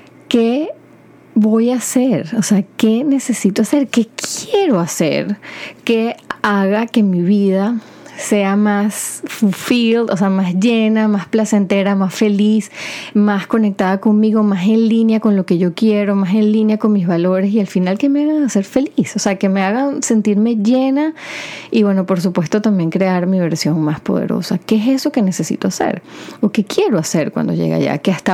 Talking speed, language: 180 wpm, Spanish